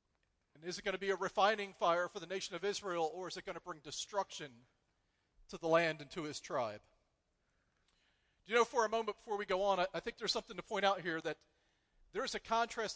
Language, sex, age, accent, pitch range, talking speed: English, male, 40-59, American, 160-210 Hz, 230 wpm